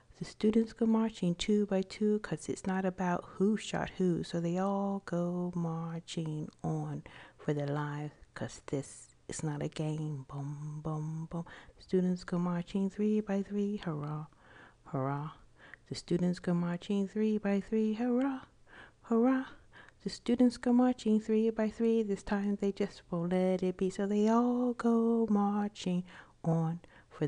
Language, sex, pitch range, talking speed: English, female, 155-210 Hz, 155 wpm